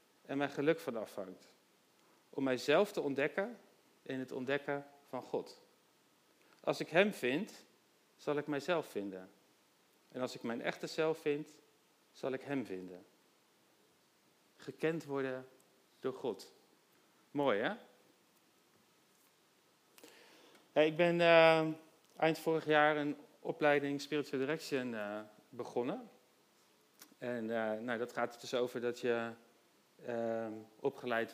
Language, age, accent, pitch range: Dutch, 40-59, Dutch, 120-155 Hz